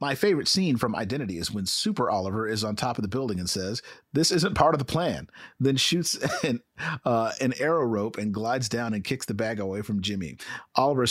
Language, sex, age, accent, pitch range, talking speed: English, male, 40-59, American, 105-125 Hz, 220 wpm